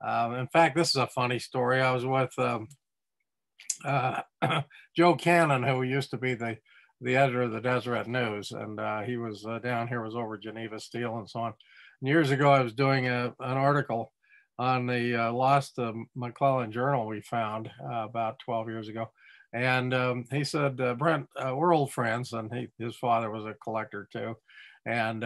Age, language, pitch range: 50-69, English, 120-150 Hz